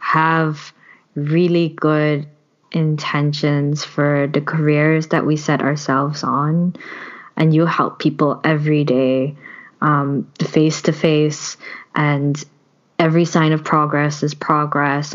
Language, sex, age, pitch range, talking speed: English, female, 20-39, 150-165 Hz, 115 wpm